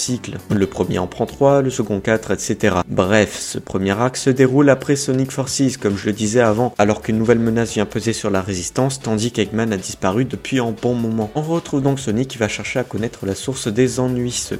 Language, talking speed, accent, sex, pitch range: French, 225 wpm, French, male, 105-140 Hz